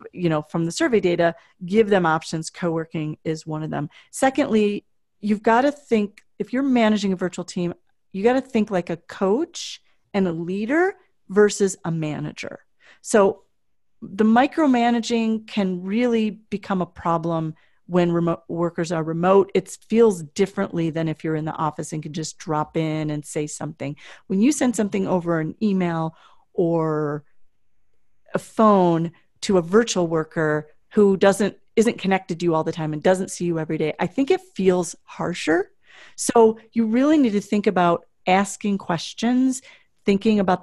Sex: female